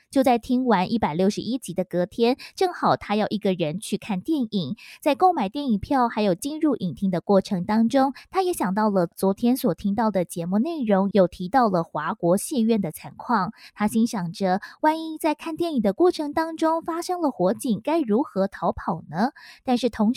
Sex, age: female, 20-39